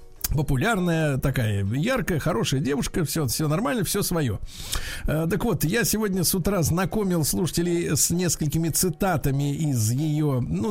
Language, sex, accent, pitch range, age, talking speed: Russian, male, native, 145-195 Hz, 50-69, 140 wpm